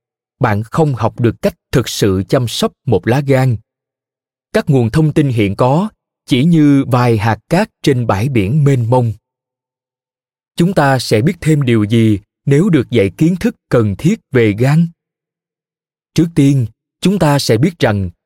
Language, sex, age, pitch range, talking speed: Vietnamese, male, 20-39, 115-155 Hz, 170 wpm